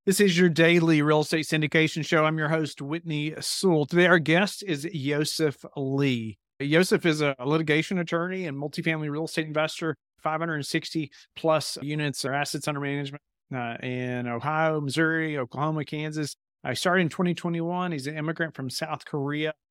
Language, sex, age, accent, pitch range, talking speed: English, male, 40-59, American, 135-165 Hz, 160 wpm